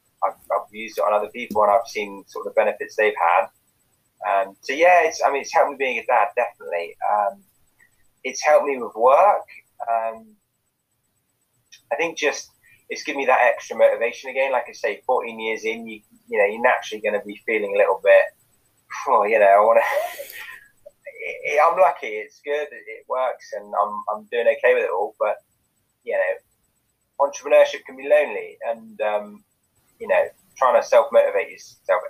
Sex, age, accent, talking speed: male, 20-39, British, 190 wpm